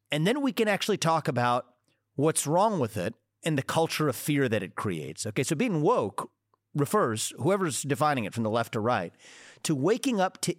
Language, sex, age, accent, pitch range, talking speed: English, male, 40-59, American, 115-165 Hz, 205 wpm